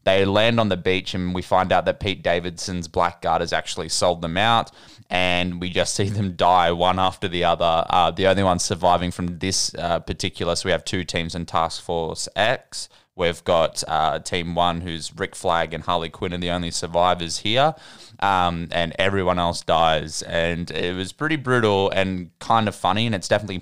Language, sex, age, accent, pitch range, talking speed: English, male, 20-39, Australian, 90-105 Hz, 200 wpm